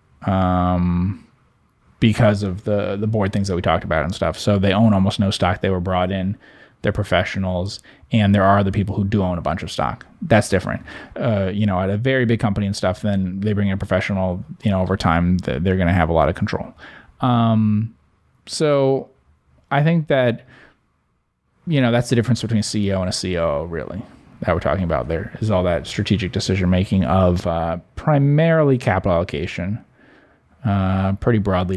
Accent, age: American, 20-39